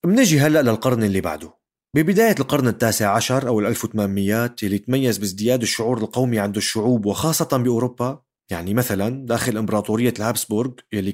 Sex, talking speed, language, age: male, 145 wpm, Arabic, 30-49